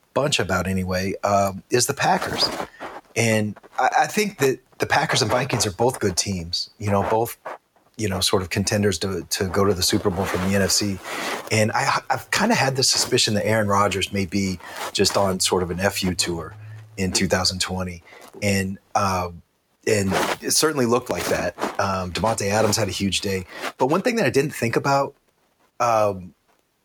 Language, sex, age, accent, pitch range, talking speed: English, male, 30-49, American, 90-110 Hz, 190 wpm